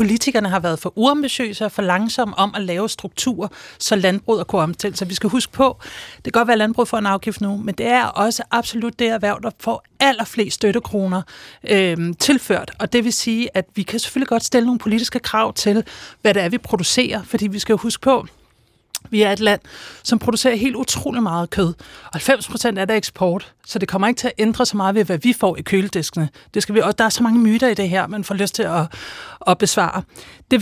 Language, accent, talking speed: Danish, native, 225 wpm